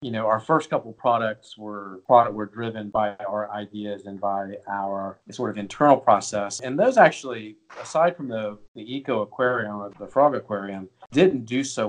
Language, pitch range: English, 100-120 Hz